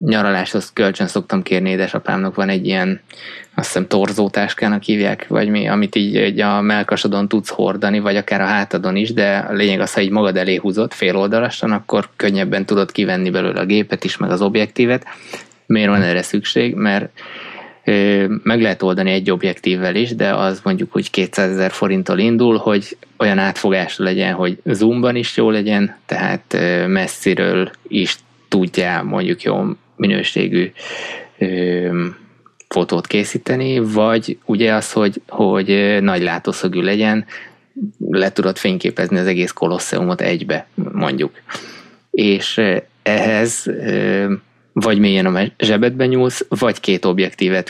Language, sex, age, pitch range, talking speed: Hungarian, male, 20-39, 95-110 Hz, 140 wpm